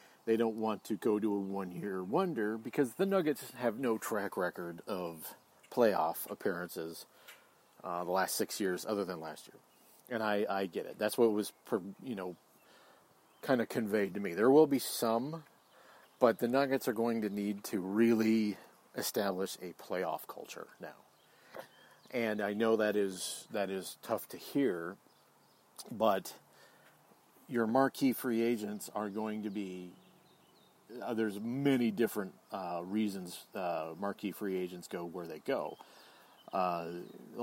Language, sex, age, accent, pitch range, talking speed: English, male, 40-59, American, 95-115 Hz, 150 wpm